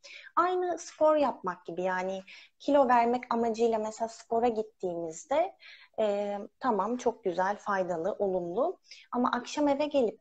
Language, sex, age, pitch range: Turkish, female, 30-49, 205-275 Hz